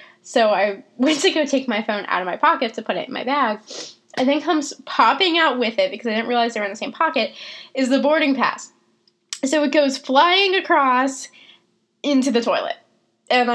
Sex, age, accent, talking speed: female, 10-29, American, 215 wpm